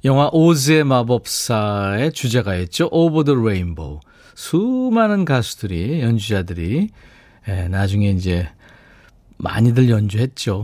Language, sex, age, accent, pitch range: Korean, male, 40-59, native, 95-145 Hz